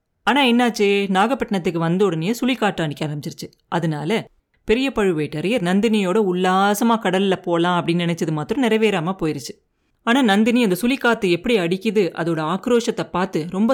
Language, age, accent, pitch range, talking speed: Tamil, 30-49, native, 175-225 Hz, 130 wpm